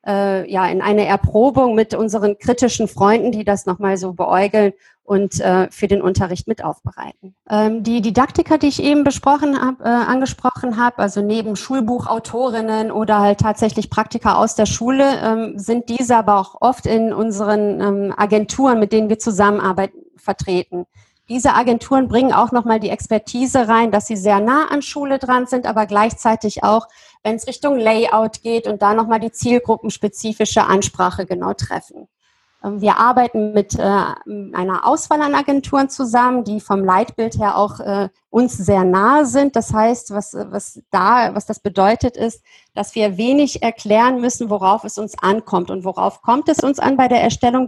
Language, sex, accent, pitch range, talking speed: German, female, German, 205-245 Hz, 160 wpm